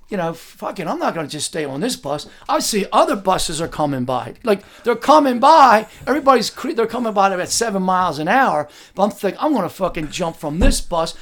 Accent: American